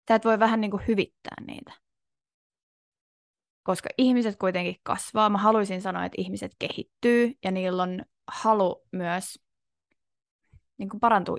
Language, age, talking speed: Finnish, 20-39, 110 wpm